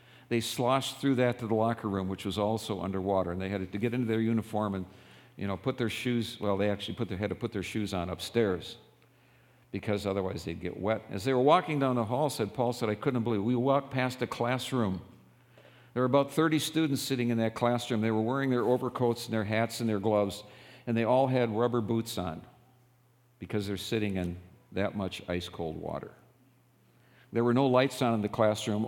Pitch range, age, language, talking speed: 105-125 Hz, 50-69, English, 220 wpm